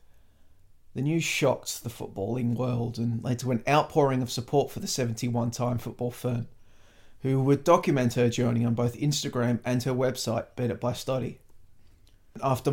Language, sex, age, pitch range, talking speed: English, male, 30-49, 120-140 Hz, 145 wpm